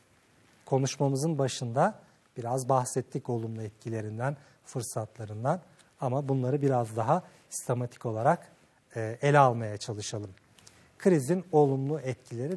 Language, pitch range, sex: Turkish, 135-185 Hz, male